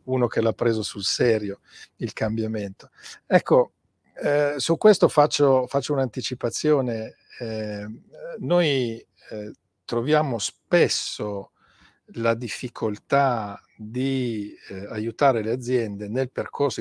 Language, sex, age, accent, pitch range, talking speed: Italian, male, 50-69, native, 110-140 Hz, 100 wpm